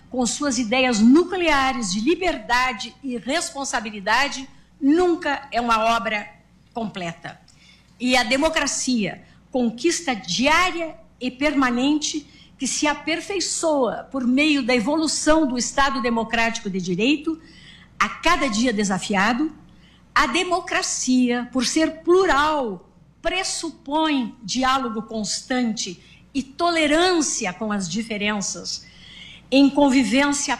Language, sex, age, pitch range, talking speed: Portuguese, female, 60-79, 225-300 Hz, 100 wpm